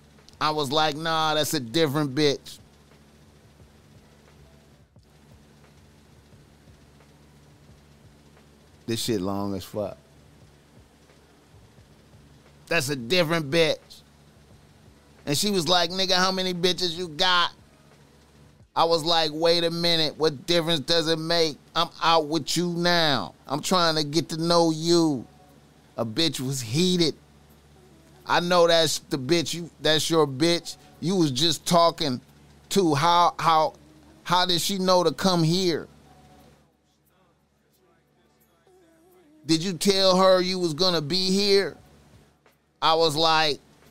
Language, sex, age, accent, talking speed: English, male, 30-49, American, 120 wpm